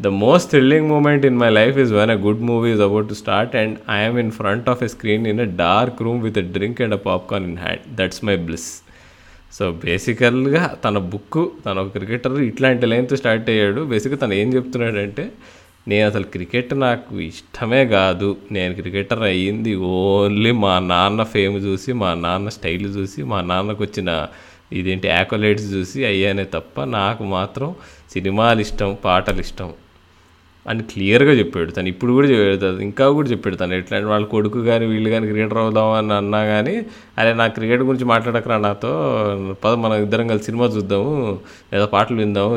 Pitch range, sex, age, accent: 95-125 Hz, male, 20-39, native